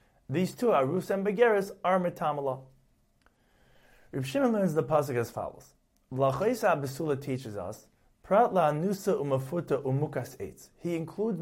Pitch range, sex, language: 130-180 Hz, male, English